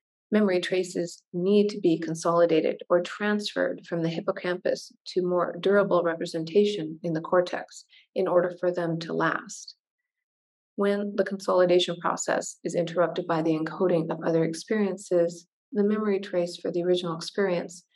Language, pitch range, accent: English, 170-190 Hz, American